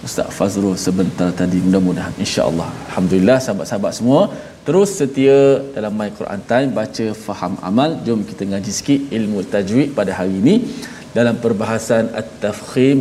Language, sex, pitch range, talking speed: Malayalam, male, 110-150 Hz, 140 wpm